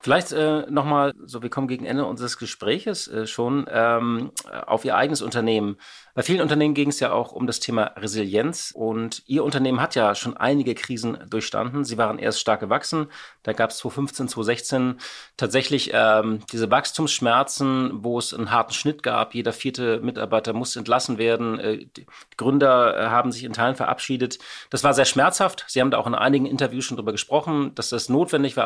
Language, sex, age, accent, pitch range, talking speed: German, male, 30-49, German, 115-145 Hz, 190 wpm